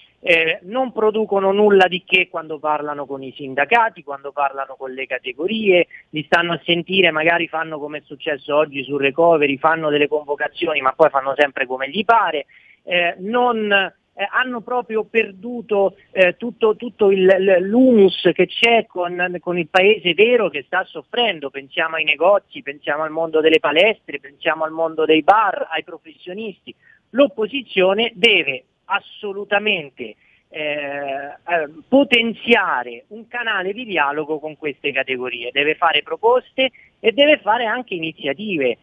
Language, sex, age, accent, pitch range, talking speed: Italian, male, 40-59, native, 150-215 Hz, 145 wpm